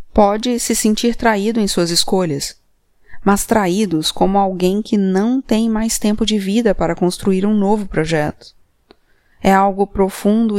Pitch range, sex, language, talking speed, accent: 185-225 Hz, female, Portuguese, 145 wpm, Brazilian